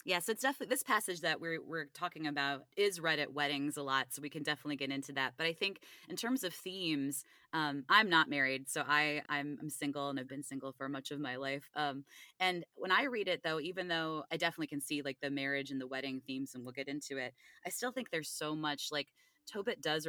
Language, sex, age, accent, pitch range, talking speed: English, female, 20-39, American, 135-160 Hz, 250 wpm